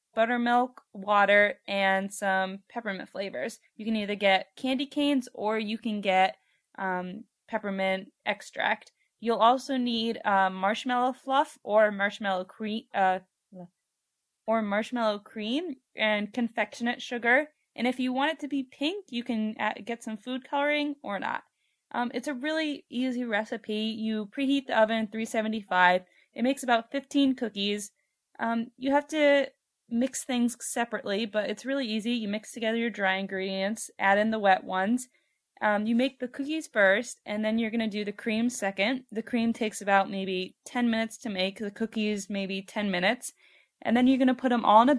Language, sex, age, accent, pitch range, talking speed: English, female, 20-39, American, 205-255 Hz, 170 wpm